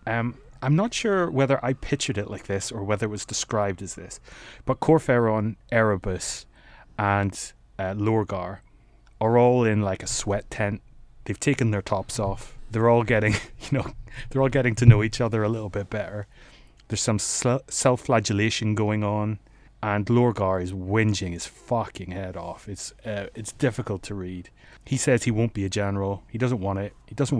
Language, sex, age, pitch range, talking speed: English, male, 30-49, 100-130 Hz, 185 wpm